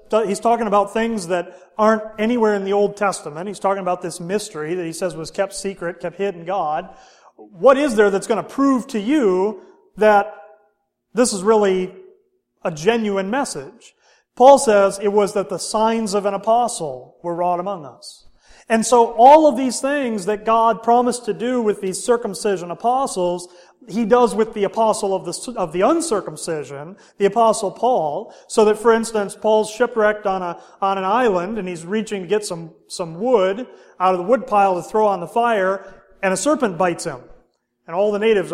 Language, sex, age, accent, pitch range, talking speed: English, male, 30-49, American, 180-220 Hz, 190 wpm